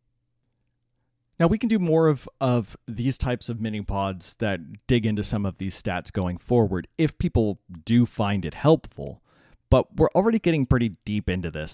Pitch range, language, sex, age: 100-130 Hz, English, male, 30-49